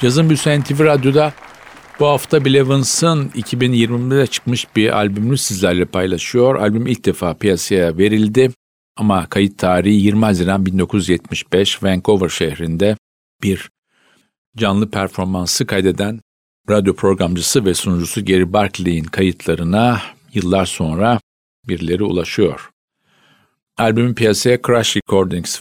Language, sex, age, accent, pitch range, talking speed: Turkish, male, 50-69, native, 95-115 Hz, 105 wpm